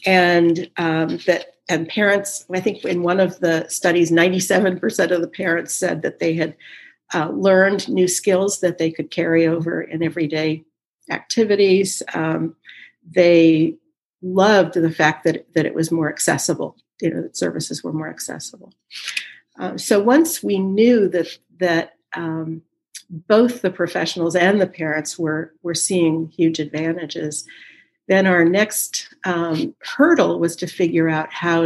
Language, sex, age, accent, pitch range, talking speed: English, female, 50-69, American, 160-190 Hz, 155 wpm